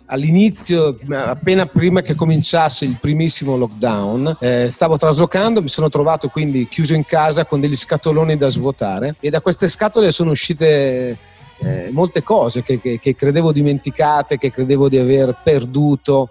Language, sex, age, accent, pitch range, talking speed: Italian, male, 40-59, native, 135-170 Hz, 155 wpm